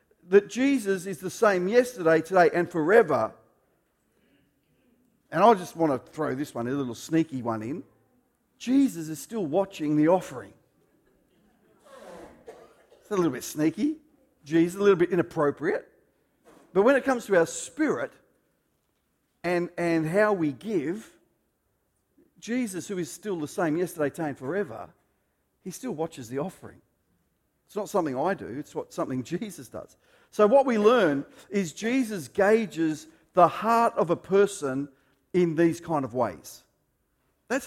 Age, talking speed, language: 50-69, 150 wpm, English